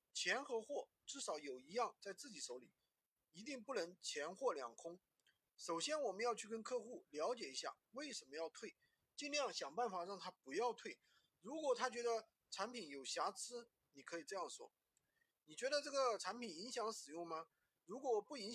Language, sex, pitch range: Chinese, male, 190-270 Hz